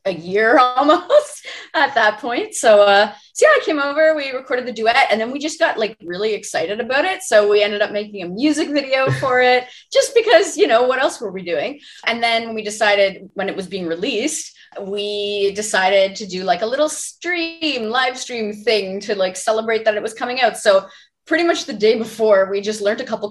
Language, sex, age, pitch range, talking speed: English, female, 20-39, 200-280 Hz, 220 wpm